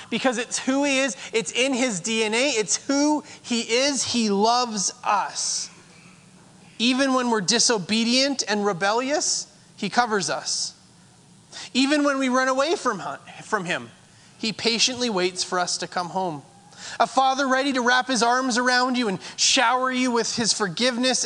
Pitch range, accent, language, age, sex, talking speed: 190-245 Hz, American, English, 30-49, male, 155 wpm